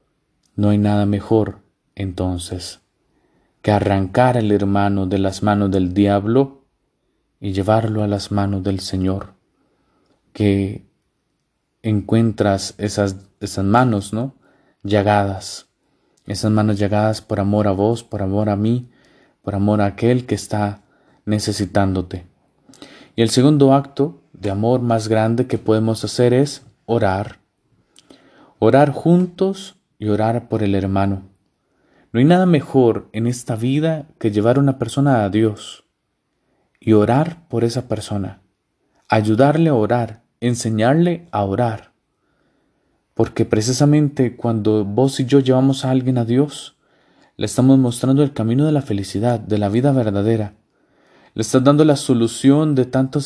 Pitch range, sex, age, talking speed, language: 100-130 Hz, male, 30-49, 135 wpm, Spanish